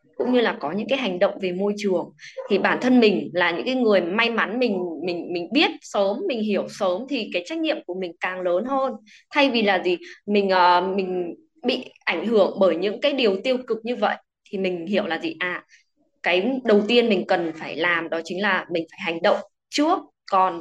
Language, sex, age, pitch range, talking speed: Vietnamese, female, 20-39, 180-245 Hz, 225 wpm